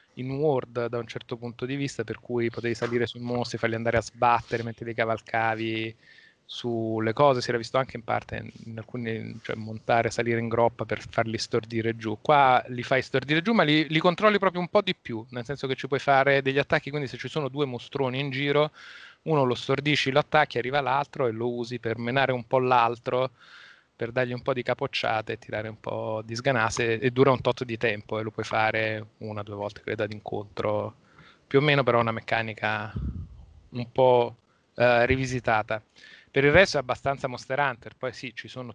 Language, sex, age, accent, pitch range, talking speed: Italian, male, 20-39, native, 110-130 Hz, 210 wpm